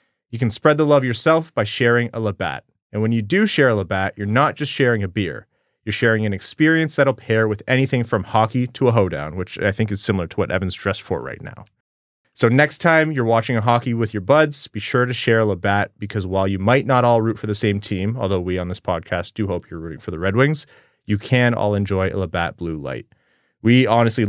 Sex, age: male, 30-49